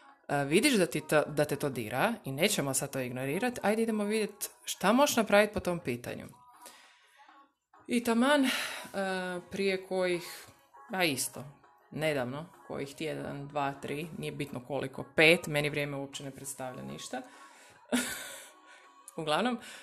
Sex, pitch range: female, 140-185 Hz